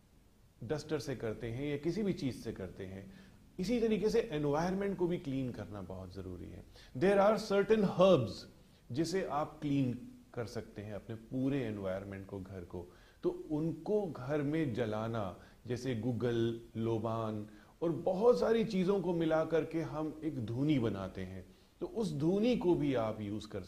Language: Hindi